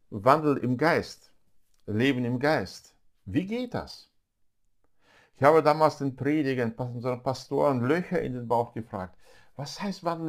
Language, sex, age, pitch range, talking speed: German, male, 50-69, 100-135 Hz, 140 wpm